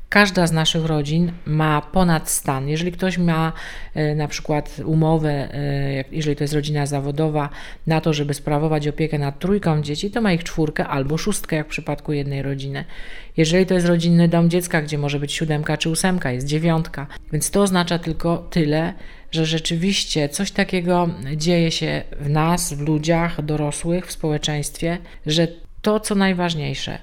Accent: native